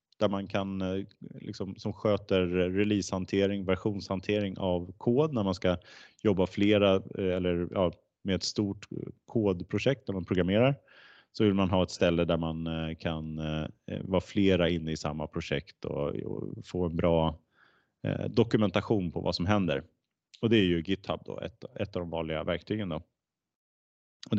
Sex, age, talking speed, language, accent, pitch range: male, 30-49, 160 wpm, Swedish, Norwegian, 85-105 Hz